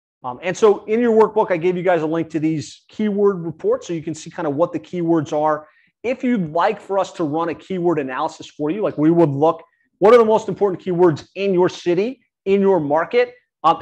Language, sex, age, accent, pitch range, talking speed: English, male, 30-49, American, 145-180 Hz, 240 wpm